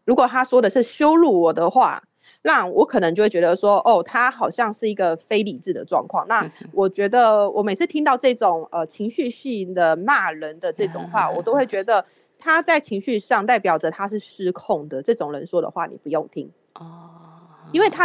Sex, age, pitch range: female, 30-49, 180-265 Hz